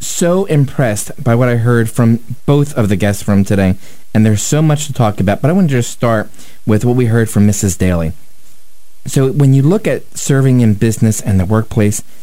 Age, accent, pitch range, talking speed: 30-49, American, 105-135 Hz, 215 wpm